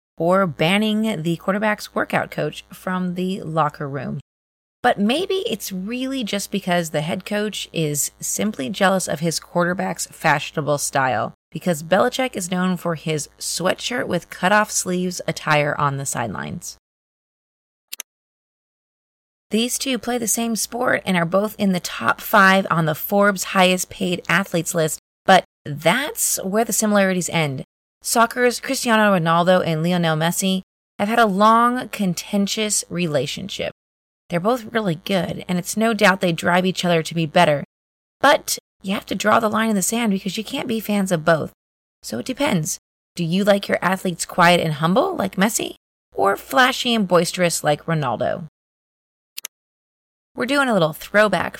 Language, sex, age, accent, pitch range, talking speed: English, female, 30-49, American, 165-215 Hz, 155 wpm